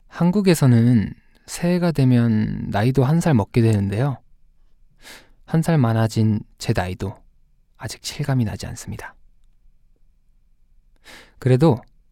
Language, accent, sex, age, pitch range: Korean, native, male, 20-39, 100-140 Hz